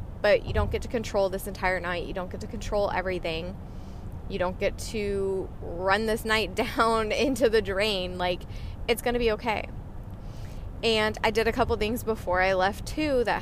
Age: 20-39